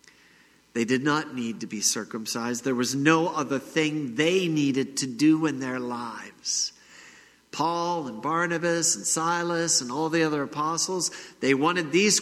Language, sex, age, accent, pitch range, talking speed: English, male, 50-69, American, 120-175 Hz, 155 wpm